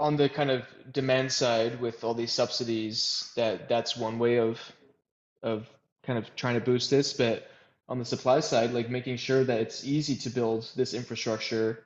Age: 20-39